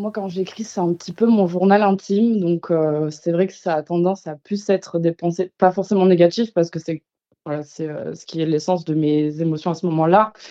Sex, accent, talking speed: female, French, 235 wpm